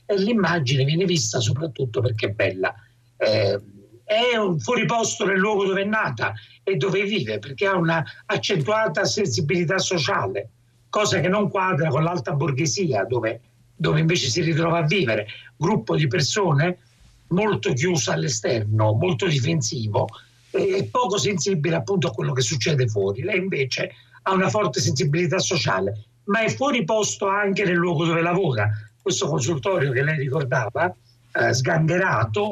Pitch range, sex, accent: 130-195 Hz, male, native